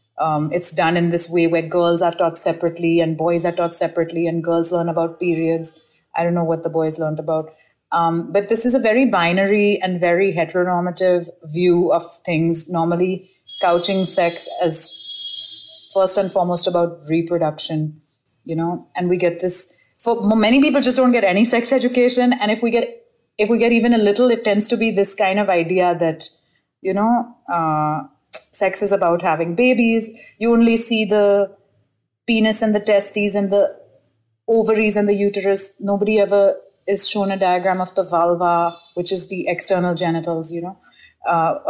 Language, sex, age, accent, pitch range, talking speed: Hindi, female, 30-49, native, 170-210 Hz, 180 wpm